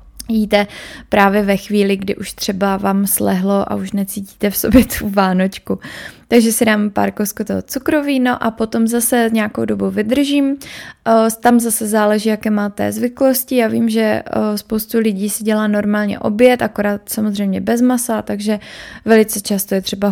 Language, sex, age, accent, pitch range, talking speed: Czech, female, 20-39, native, 205-230 Hz, 160 wpm